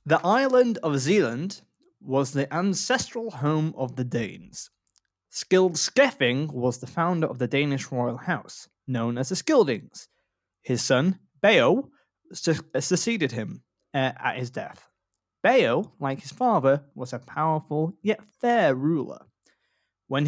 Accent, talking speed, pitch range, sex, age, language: British, 135 wpm, 135-205 Hz, male, 20-39, English